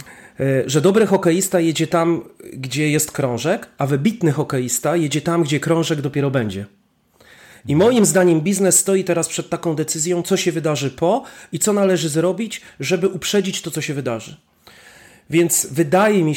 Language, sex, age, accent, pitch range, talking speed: Polish, male, 40-59, native, 140-170 Hz, 160 wpm